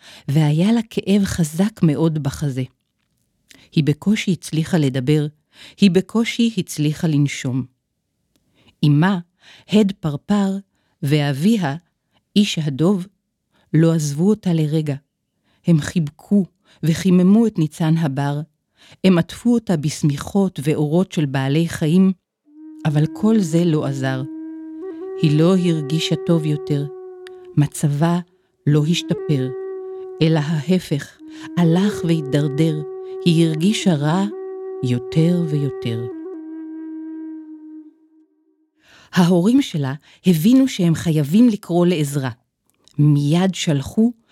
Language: Hebrew